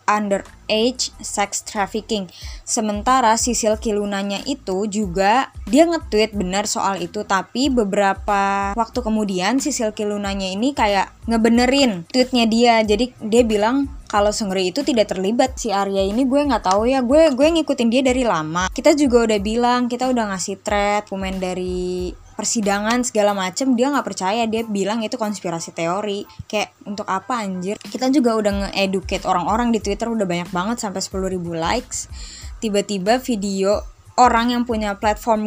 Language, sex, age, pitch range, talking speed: Indonesian, female, 20-39, 195-230 Hz, 150 wpm